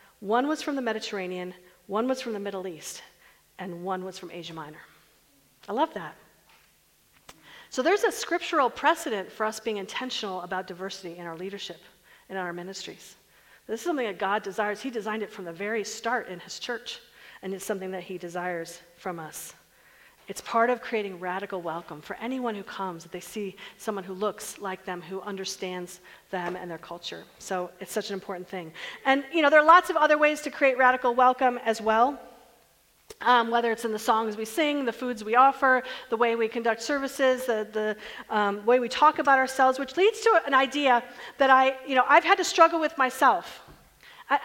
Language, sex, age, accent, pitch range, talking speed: English, female, 40-59, American, 200-280 Hz, 200 wpm